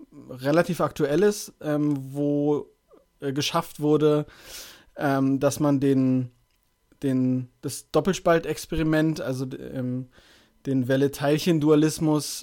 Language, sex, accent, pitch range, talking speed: German, male, German, 135-150 Hz, 85 wpm